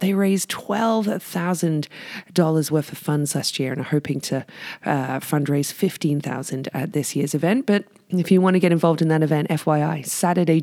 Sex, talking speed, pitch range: female, 175 wpm, 150-190 Hz